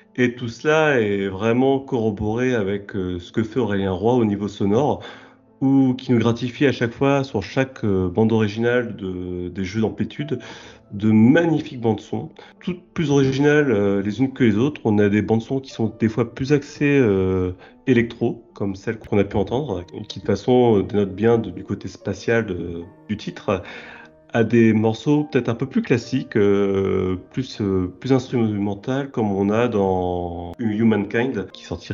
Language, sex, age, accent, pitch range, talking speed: French, male, 30-49, French, 100-130 Hz, 175 wpm